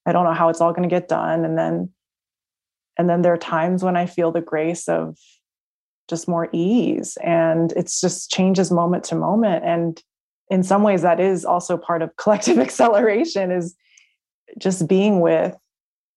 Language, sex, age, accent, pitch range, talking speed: English, female, 20-39, American, 170-195 Hz, 180 wpm